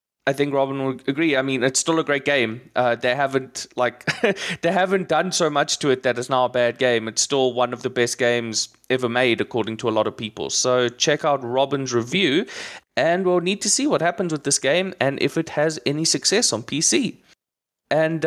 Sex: male